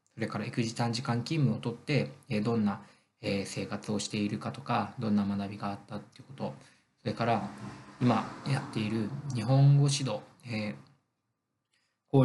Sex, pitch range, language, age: male, 105-130 Hz, Japanese, 20-39